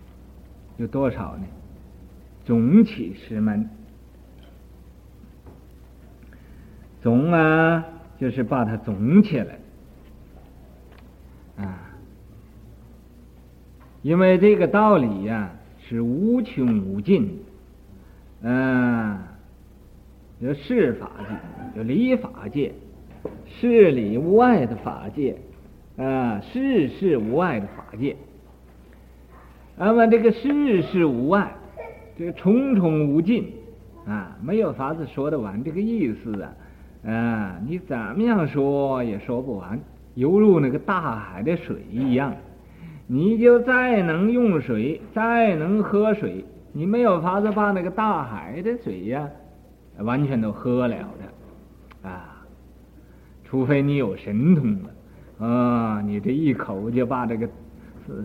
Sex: male